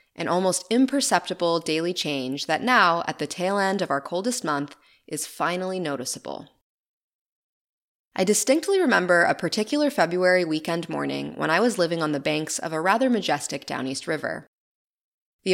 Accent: American